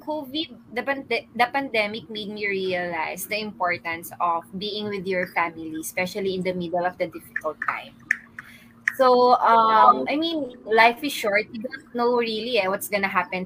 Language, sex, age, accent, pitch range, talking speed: English, female, 20-39, Filipino, 180-250 Hz, 175 wpm